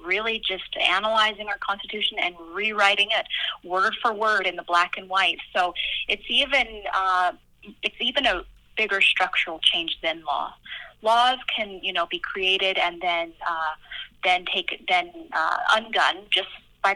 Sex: female